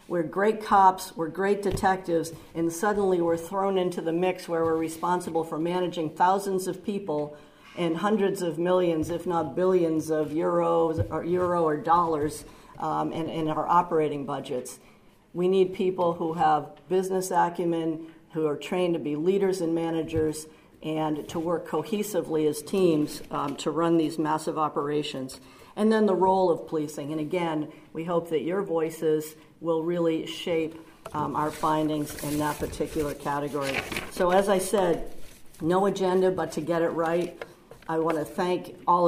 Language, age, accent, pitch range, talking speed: English, 50-69, American, 155-180 Hz, 160 wpm